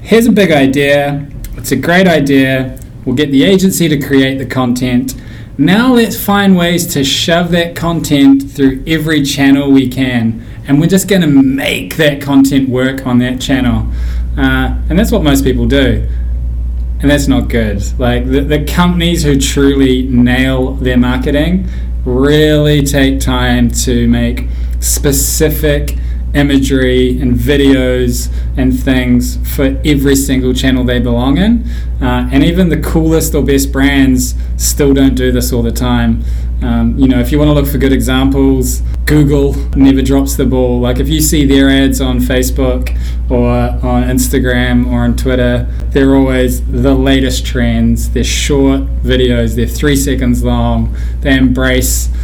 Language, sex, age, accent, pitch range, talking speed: English, male, 20-39, Australian, 120-140 Hz, 155 wpm